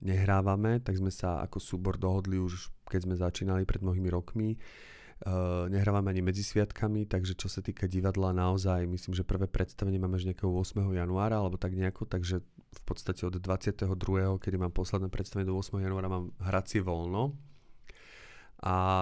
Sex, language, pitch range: male, Slovak, 95-105 Hz